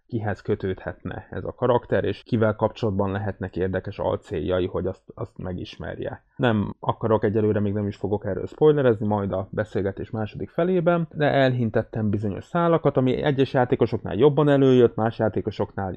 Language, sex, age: Hungarian, male, 20-39